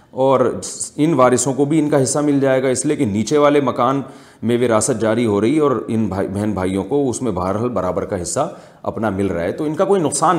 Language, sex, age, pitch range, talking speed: Urdu, male, 40-59, 110-150 Hz, 250 wpm